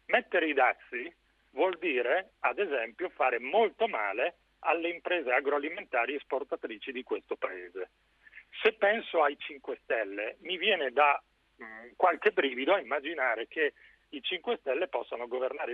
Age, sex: 40-59, male